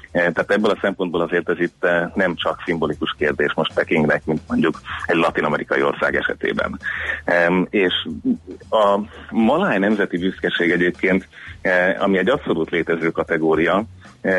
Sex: male